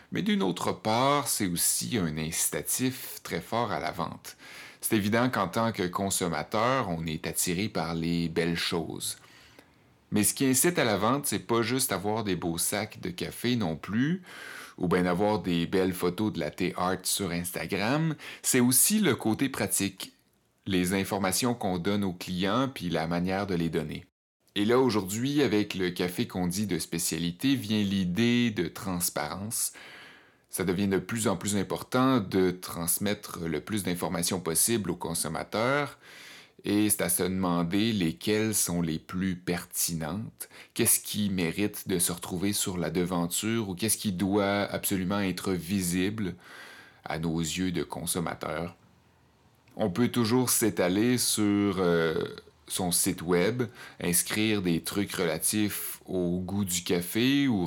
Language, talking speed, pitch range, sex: French, 155 wpm, 85-110 Hz, male